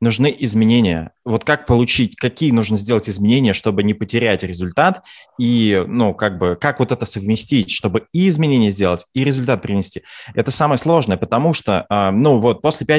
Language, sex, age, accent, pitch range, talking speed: Russian, male, 20-39, native, 100-130 Hz, 170 wpm